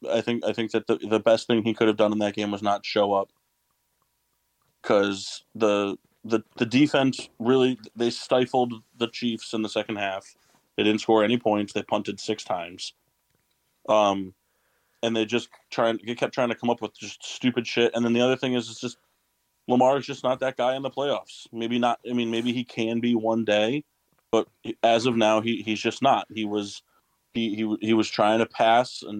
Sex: male